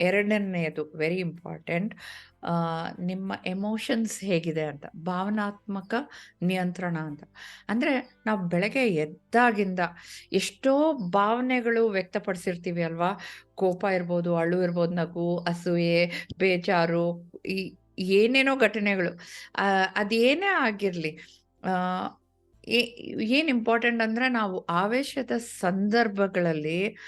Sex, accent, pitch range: female, native, 175-225 Hz